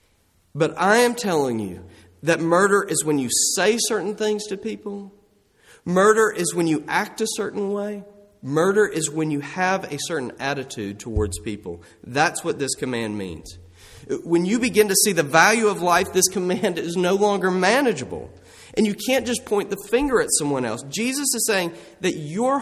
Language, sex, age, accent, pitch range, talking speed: English, male, 40-59, American, 145-210 Hz, 180 wpm